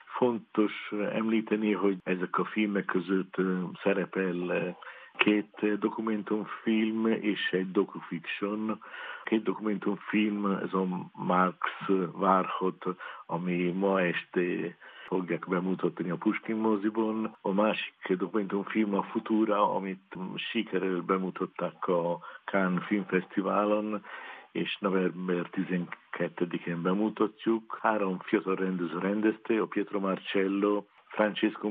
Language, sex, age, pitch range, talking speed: Hungarian, male, 50-69, 90-105 Hz, 95 wpm